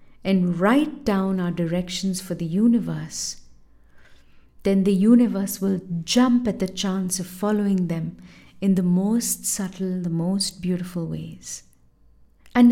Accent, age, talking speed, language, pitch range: Indian, 50-69, 130 wpm, English, 175-210 Hz